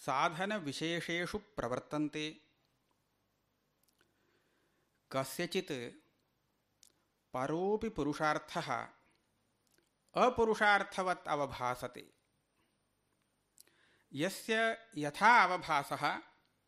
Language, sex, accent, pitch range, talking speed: English, male, Indian, 145-200 Hz, 40 wpm